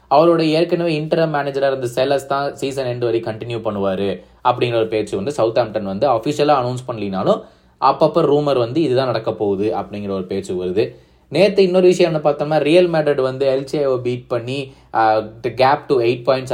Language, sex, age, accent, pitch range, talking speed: Tamil, male, 20-39, native, 110-140 Hz, 150 wpm